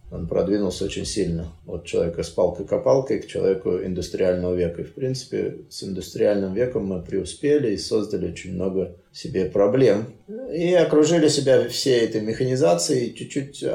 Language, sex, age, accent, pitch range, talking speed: Russian, male, 30-49, native, 105-150 Hz, 150 wpm